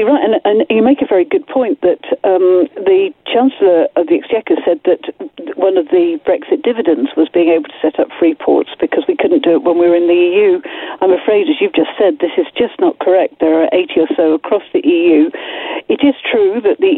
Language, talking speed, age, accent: English, 235 wpm, 50-69, British